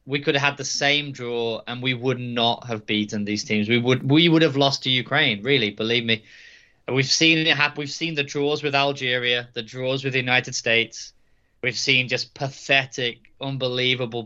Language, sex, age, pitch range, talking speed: English, male, 20-39, 115-140 Hz, 200 wpm